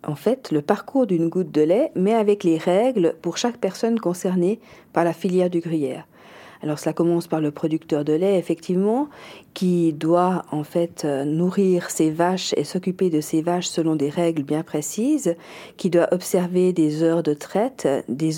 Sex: female